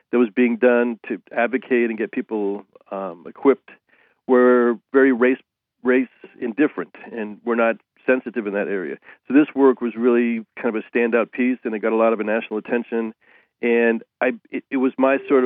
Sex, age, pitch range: male, 40-59, 110-130 Hz